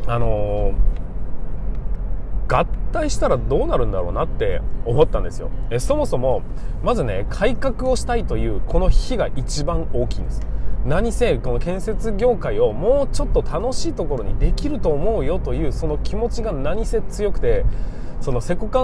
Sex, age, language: male, 20-39, Japanese